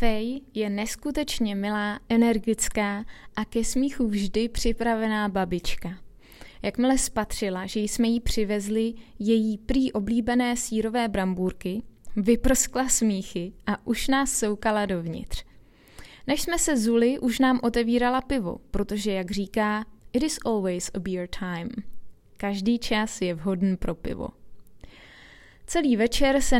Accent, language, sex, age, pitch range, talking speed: native, Czech, female, 20-39, 195-235 Hz, 125 wpm